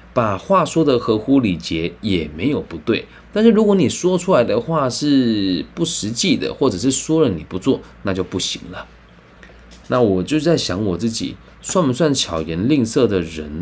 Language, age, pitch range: Chinese, 20-39, 90-145 Hz